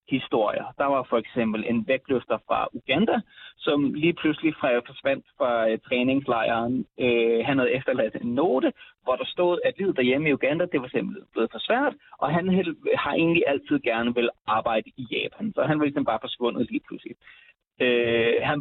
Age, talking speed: 30-49, 180 wpm